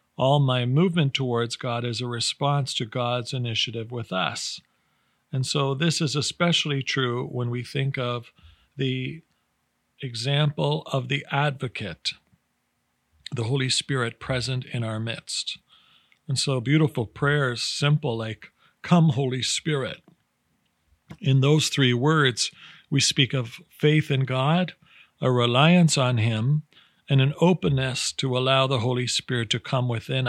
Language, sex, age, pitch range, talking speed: English, male, 50-69, 120-150 Hz, 135 wpm